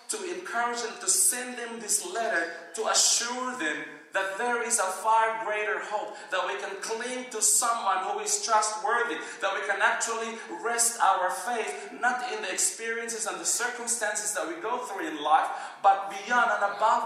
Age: 40-59